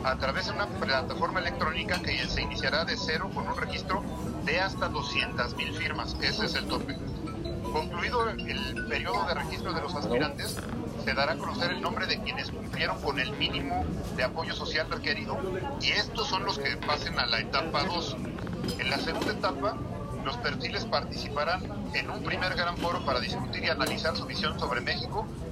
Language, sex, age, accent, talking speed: Spanish, male, 50-69, Mexican, 180 wpm